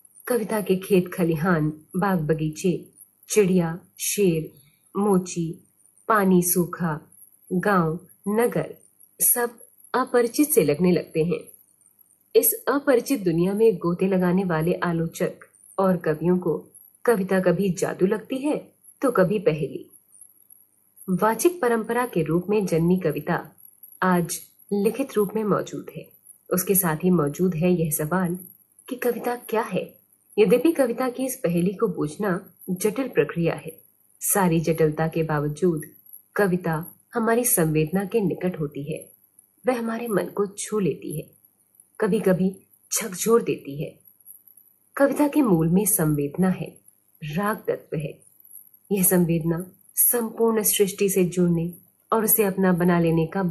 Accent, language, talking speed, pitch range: native, Hindi, 130 wpm, 160-215 Hz